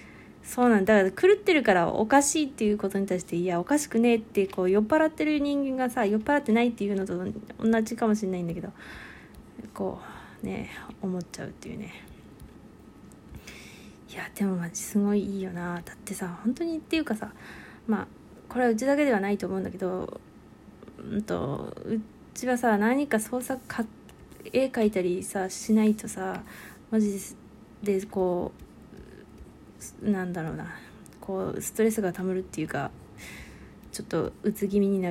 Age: 20-39